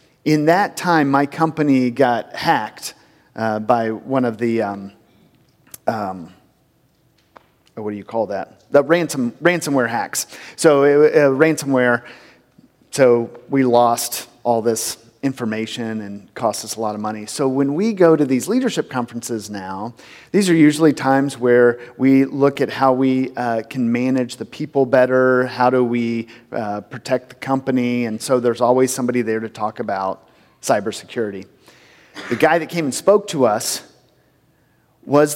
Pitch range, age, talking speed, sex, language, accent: 115-140 Hz, 40-59, 150 wpm, male, English, American